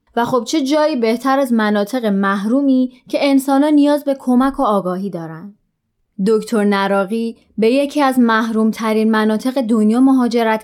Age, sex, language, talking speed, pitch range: 20-39, female, Persian, 140 wpm, 210-250 Hz